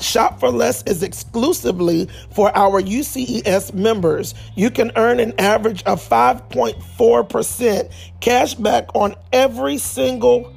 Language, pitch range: English, 185-230 Hz